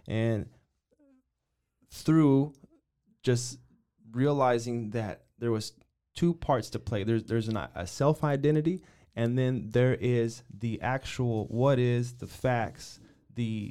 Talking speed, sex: 125 wpm, male